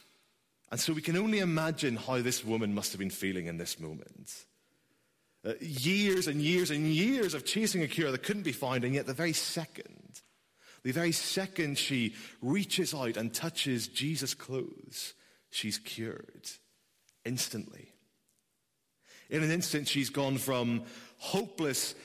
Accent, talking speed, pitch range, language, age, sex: British, 150 wpm, 110-165 Hz, English, 30-49, male